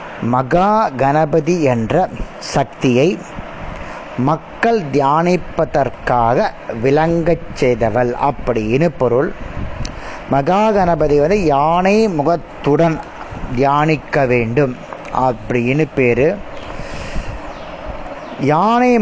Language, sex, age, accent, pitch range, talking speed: Tamil, male, 30-49, native, 135-185 Hz, 55 wpm